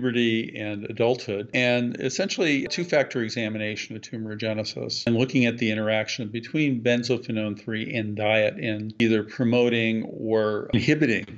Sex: male